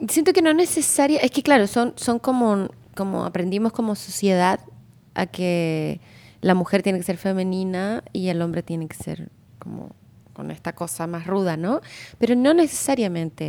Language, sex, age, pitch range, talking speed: English, female, 20-39, 175-215 Hz, 170 wpm